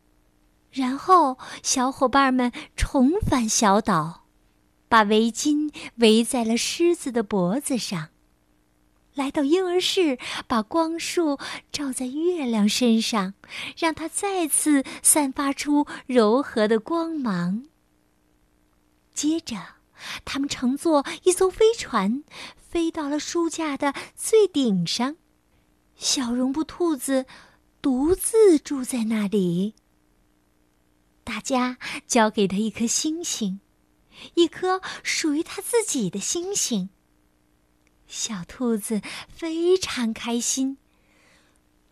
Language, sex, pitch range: Chinese, female, 180-295 Hz